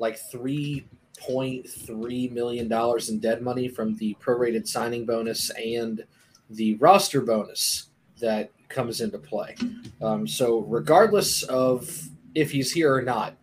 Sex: male